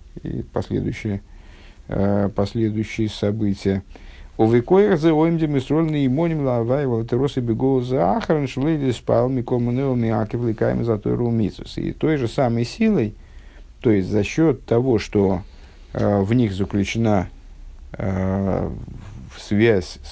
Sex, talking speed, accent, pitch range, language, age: male, 55 wpm, native, 90-115 Hz, Russian, 50-69